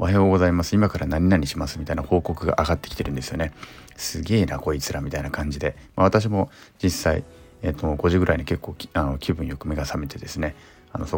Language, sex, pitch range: Japanese, male, 75-100 Hz